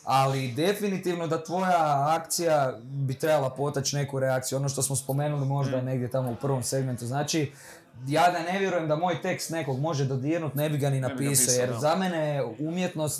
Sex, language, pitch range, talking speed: male, Croatian, 135-165 Hz, 190 wpm